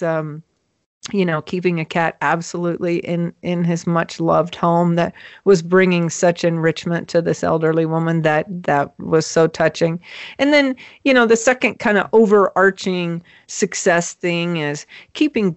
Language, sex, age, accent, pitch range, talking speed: English, female, 40-59, American, 165-195 Hz, 155 wpm